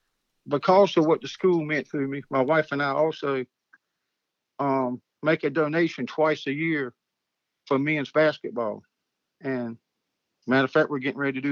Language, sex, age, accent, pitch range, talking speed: English, male, 50-69, American, 135-165 Hz, 165 wpm